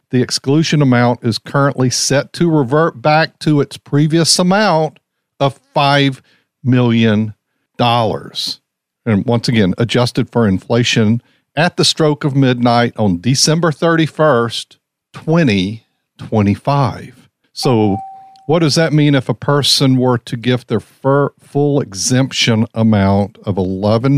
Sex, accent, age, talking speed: male, American, 50-69, 125 wpm